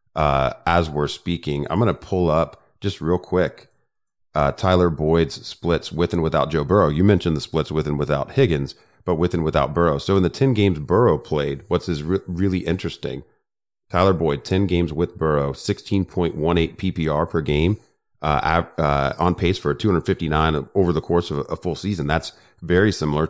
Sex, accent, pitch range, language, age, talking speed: male, American, 80-95 Hz, English, 30-49, 205 wpm